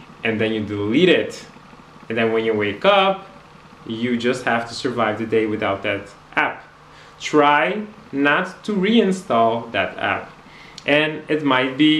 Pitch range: 120-185 Hz